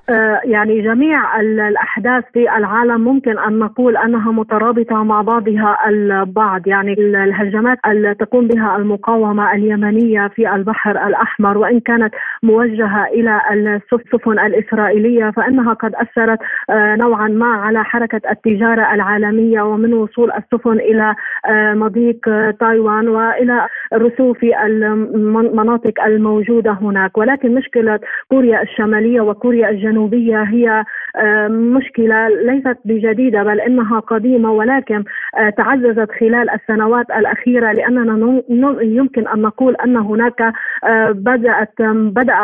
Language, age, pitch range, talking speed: Arabic, 30-49, 215-235 Hz, 105 wpm